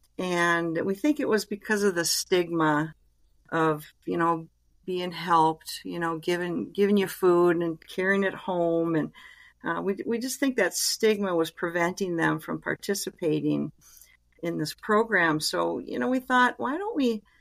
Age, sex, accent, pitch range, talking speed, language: 50-69, female, American, 170-210 Hz, 165 wpm, English